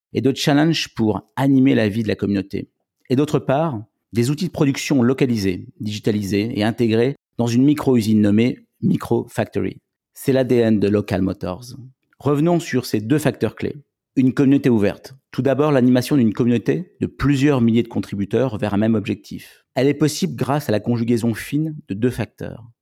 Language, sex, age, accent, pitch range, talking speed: French, male, 50-69, French, 105-135 Hz, 175 wpm